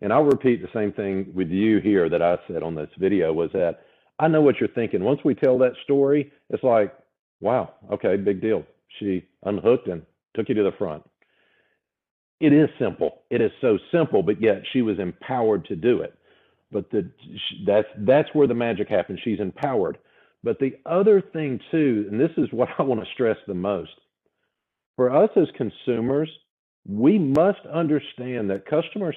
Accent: American